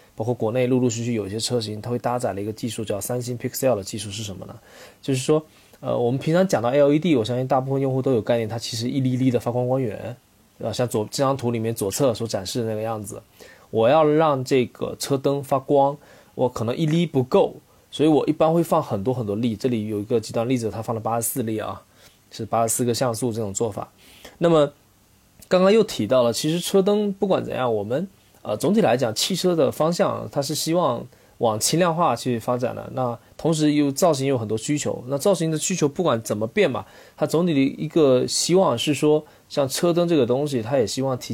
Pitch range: 115-150 Hz